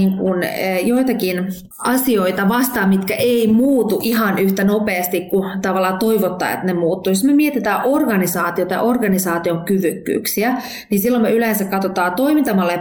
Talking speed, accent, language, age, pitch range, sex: 135 wpm, native, Finnish, 20-39, 185-220 Hz, female